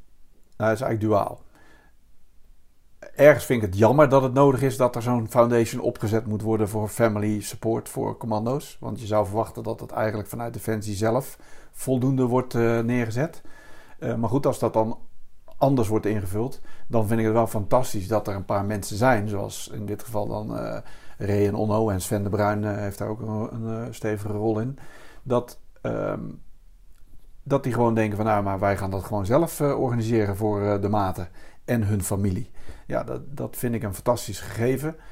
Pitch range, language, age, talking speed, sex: 105-120 Hz, Dutch, 50-69, 195 wpm, male